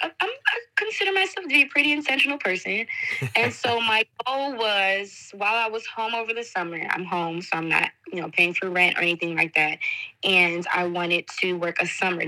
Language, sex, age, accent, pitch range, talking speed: English, female, 20-39, American, 180-245 Hz, 205 wpm